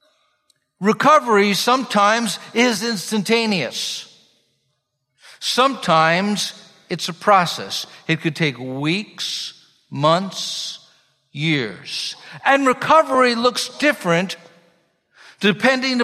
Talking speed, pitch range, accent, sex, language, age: 70 wpm, 145-230 Hz, American, male, English, 60-79